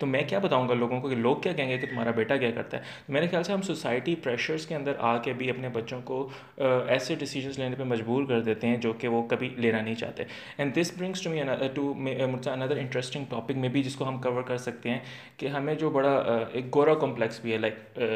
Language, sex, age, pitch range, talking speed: Urdu, male, 20-39, 120-145 Hz, 250 wpm